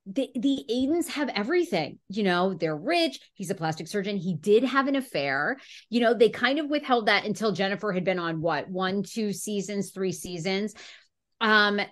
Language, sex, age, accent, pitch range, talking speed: English, female, 30-49, American, 180-245 Hz, 185 wpm